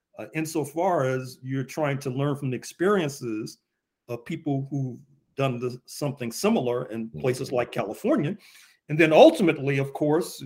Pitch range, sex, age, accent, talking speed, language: 130-165 Hz, male, 50-69, American, 140 wpm, English